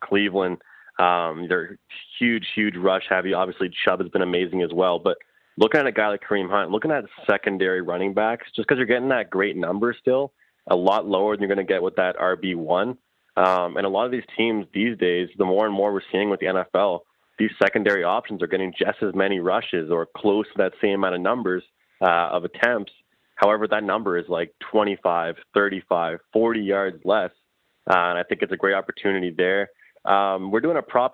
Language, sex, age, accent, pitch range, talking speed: English, male, 20-39, American, 90-105 Hz, 210 wpm